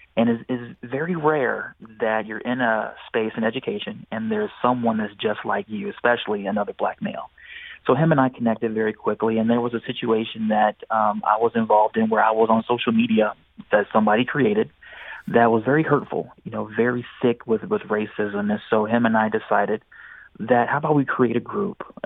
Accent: American